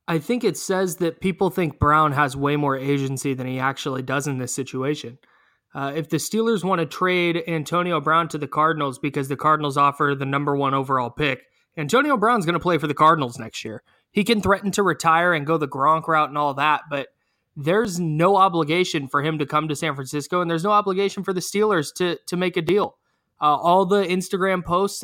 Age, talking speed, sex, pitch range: 20-39, 220 wpm, male, 145-190 Hz